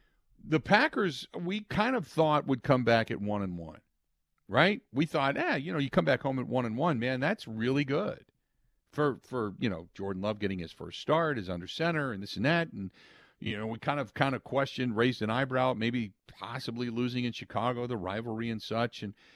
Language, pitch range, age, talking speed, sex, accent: English, 110-150 Hz, 50-69, 220 wpm, male, American